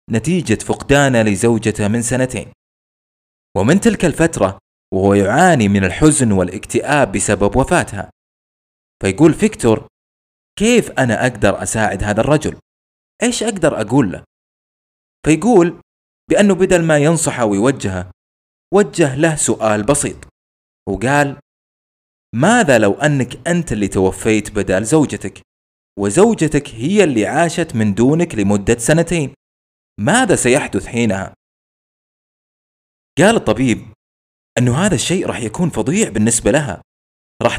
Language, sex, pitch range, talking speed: Arabic, male, 95-130 Hz, 110 wpm